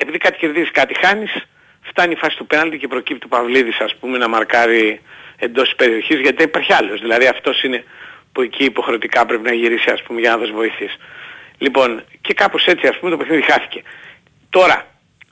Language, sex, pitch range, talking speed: Greek, male, 120-185 Hz, 195 wpm